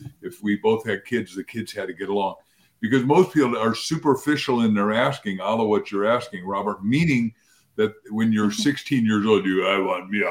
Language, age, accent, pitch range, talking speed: English, 50-69, American, 110-140 Hz, 215 wpm